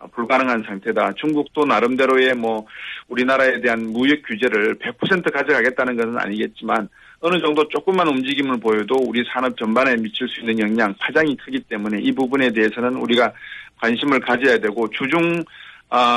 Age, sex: 40-59, male